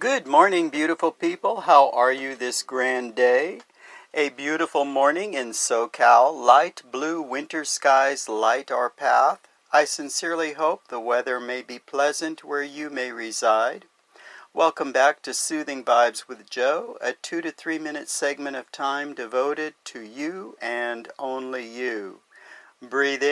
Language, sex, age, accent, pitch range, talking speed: English, male, 50-69, American, 130-180 Hz, 145 wpm